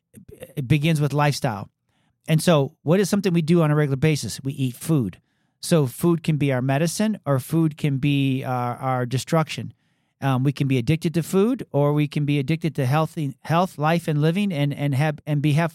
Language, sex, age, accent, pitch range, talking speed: English, male, 40-59, American, 145-180 Hz, 210 wpm